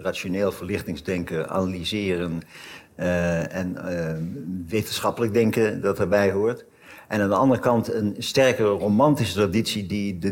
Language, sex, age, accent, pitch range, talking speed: Dutch, male, 60-79, Dutch, 90-115 Hz, 130 wpm